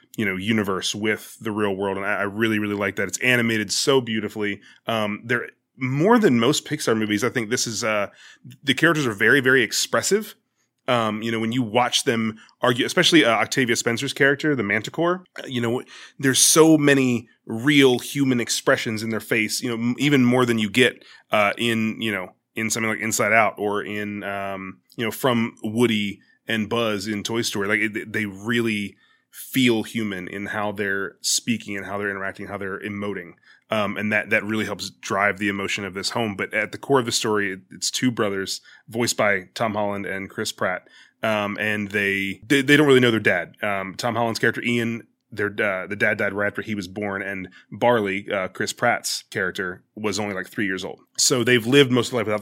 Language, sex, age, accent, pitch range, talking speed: English, male, 20-39, American, 105-120 Hz, 210 wpm